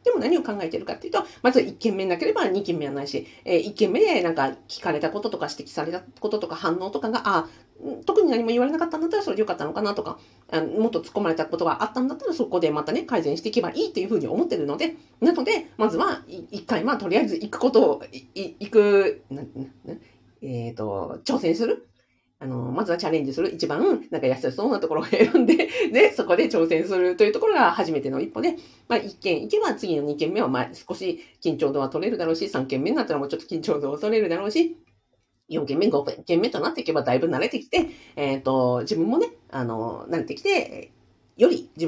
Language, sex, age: Japanese, female, 40-59